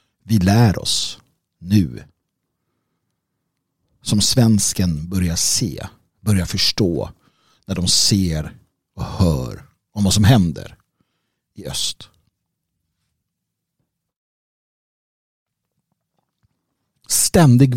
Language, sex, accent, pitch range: Swedish, male, native, 95-125 Hz